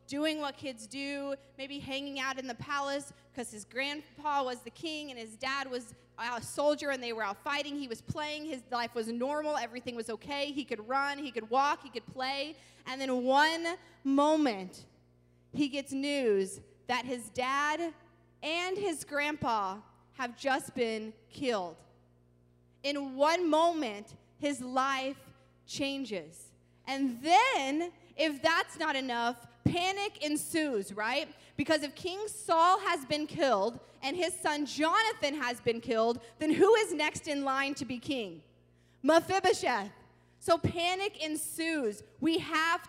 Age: 20-39